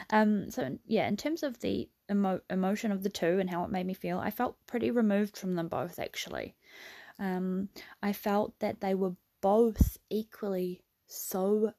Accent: Australian